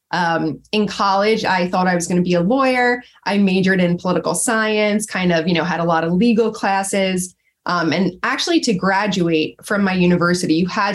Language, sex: English, female